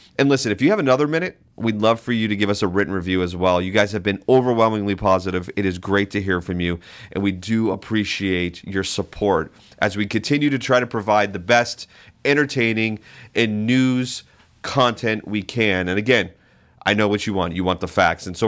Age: 30-49